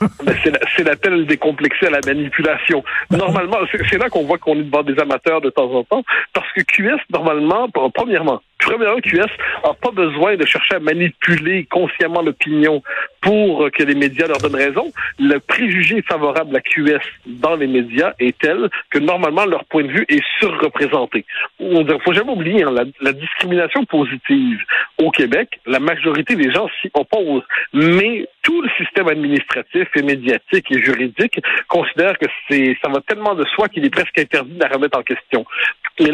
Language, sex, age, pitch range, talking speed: French, male, 60-79, 145-190 Hz, 175 wpm